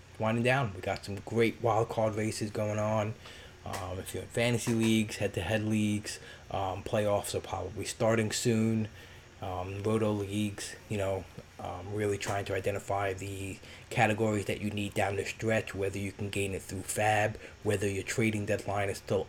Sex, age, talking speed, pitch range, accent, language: male, 20-39, 180 wpm, 95-110 Hz, American, English